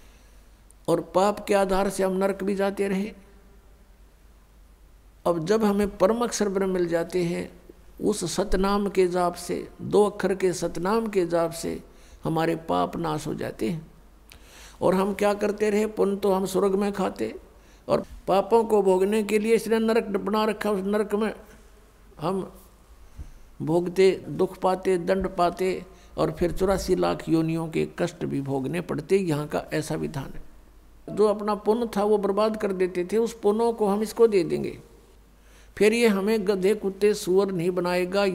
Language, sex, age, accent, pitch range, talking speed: Hindi, male, 60-79, native, 175-210 Hz, 140 wpm